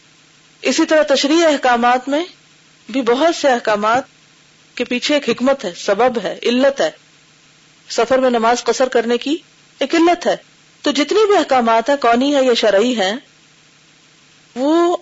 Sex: female